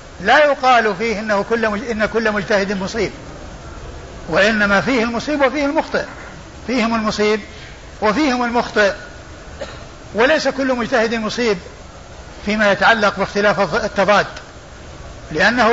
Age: 50-69